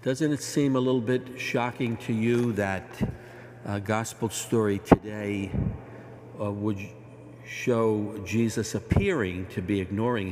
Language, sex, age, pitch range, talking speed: English, male, 60-79, 100-120 Hz, 130 wpm